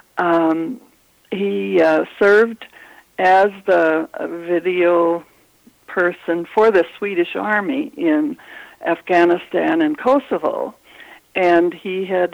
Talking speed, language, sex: 90 wpm, English, female